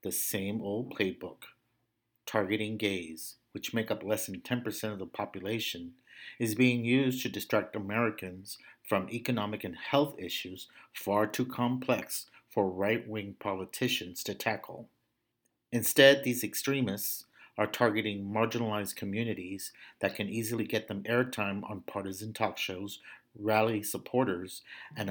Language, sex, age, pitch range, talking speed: English, male, 50-69, 100-115 Hz, 130 wpm